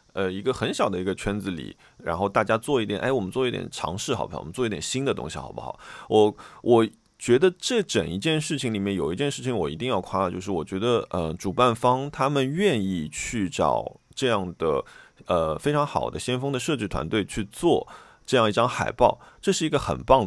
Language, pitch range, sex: Chinese, 90-130 Hz, male